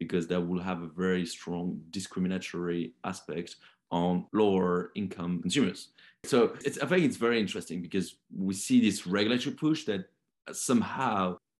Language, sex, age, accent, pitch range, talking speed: English, male, 30-49, French, 90-105 Hz, 140 wpm